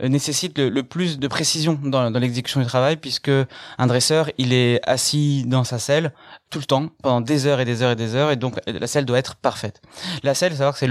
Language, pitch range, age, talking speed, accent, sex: French, 120-145 Hz, 20-39, 235 wpm, French, male